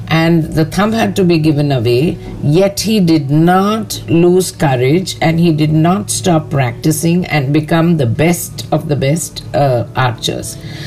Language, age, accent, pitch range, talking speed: English, 50-69, Indian, 140-175 Hz, 160 wpm